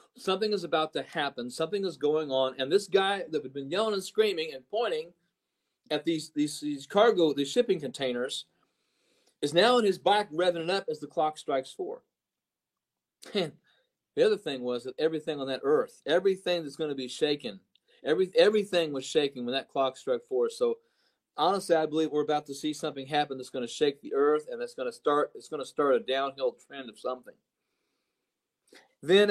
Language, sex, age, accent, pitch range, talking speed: English, male, 40-59, American, 145-210 Hz, 195 wpm